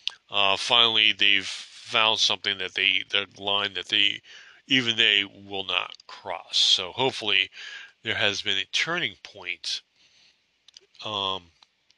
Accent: American